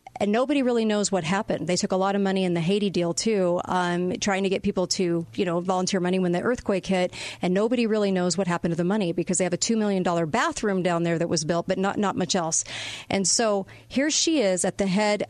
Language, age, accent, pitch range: English, 40-59, American, 180-225 Hz